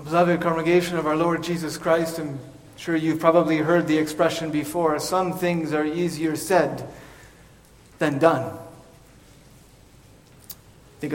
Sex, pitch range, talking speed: male, 160-205 Hz, 125 wpm